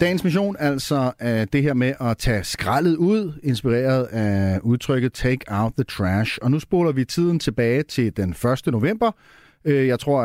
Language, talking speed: Danish, 175 wpm